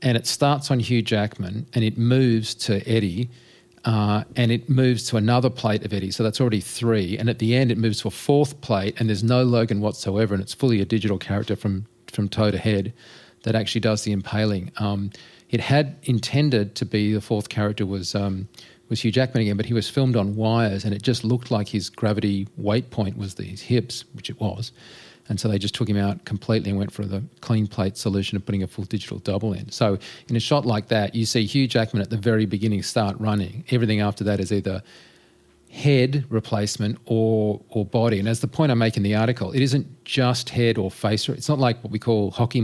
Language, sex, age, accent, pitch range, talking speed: English, male, 40-59, Australian, 105-120 Hz, 225 wpm